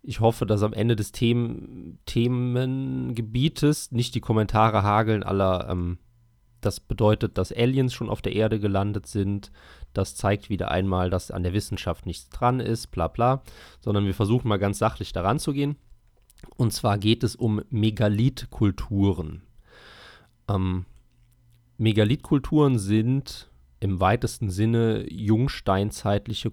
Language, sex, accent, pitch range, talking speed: German, male, German, 95-120 Hz, 135 wpm